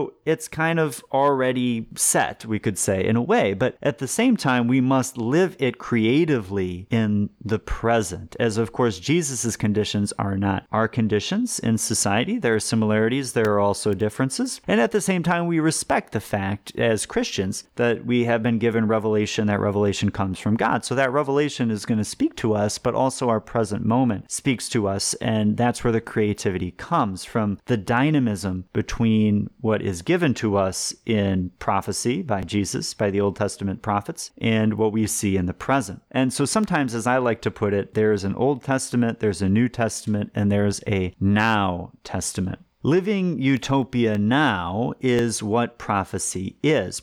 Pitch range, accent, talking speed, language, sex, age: 100-130 Hz, American, 180 wpm, English, male, 30-49